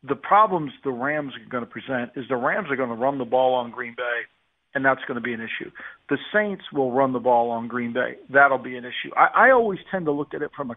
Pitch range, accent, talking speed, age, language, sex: 135-170 Hz, American, 280 wpm, 50-69, English, male